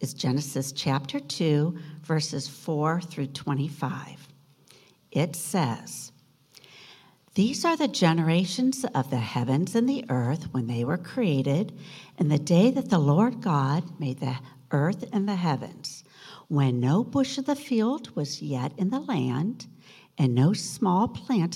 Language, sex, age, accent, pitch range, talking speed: English, female, 60-79, American, 135-205 Hz, 145 wpm